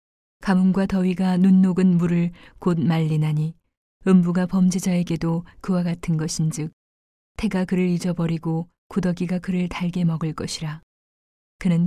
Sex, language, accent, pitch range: female, Korean, native, 160-180 Hz